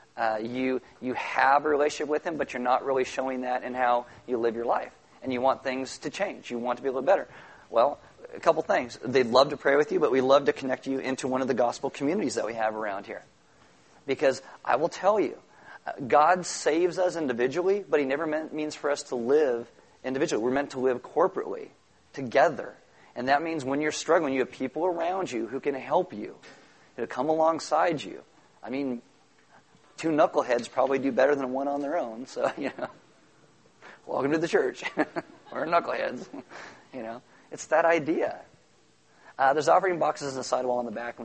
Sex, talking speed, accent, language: male, 205 wpm, American, English